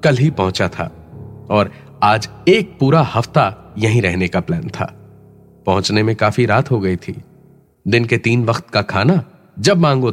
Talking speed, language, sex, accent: 170 wpm, Hindi, male, native